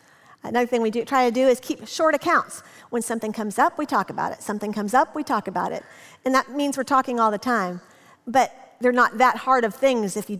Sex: female